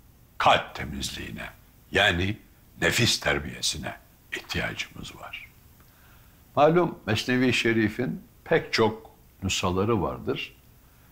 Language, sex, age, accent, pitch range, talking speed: English, male, 60-79, Turkish, 90-115 Hz, 75 wpm